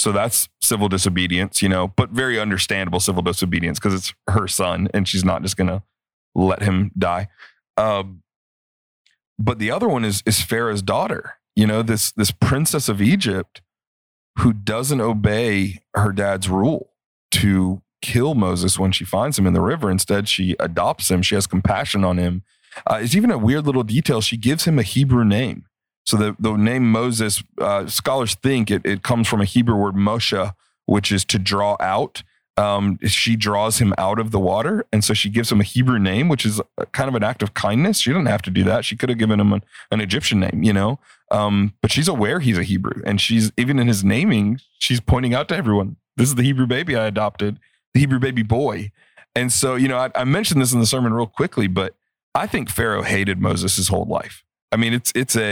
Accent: American